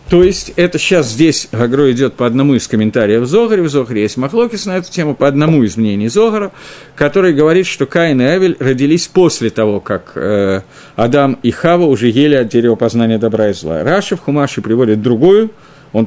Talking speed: 190 wpm